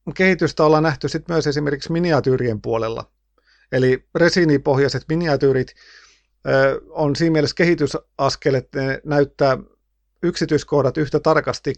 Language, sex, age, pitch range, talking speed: Finnish, male, 50-69, 120-150 Hz, 95 wpm